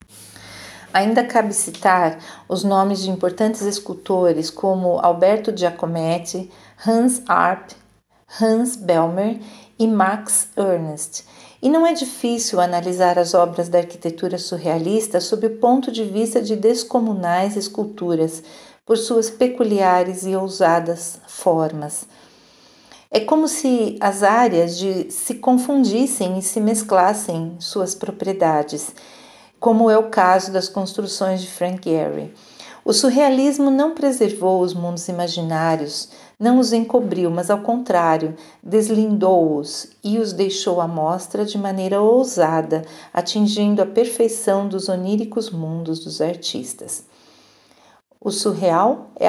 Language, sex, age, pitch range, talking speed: English, female, 40-59, 175-220 Hz, 120 wpm